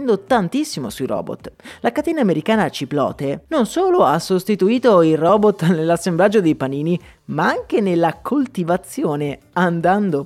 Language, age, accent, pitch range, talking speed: Italian, 30-49, native, 145-215 Hz, 125 wpm